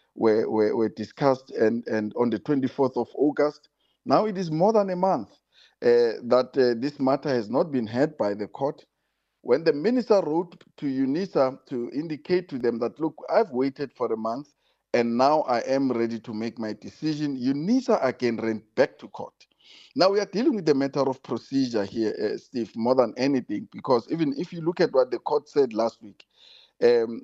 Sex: male